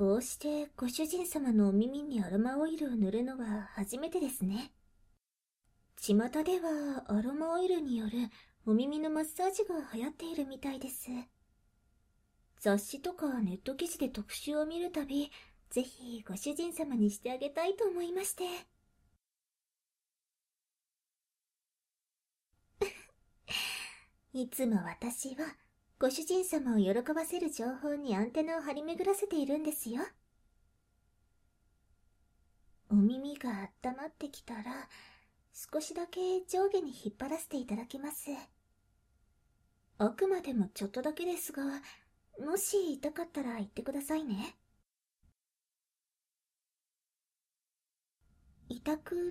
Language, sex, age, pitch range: Japanese, male, 40-59, 225-320 Hz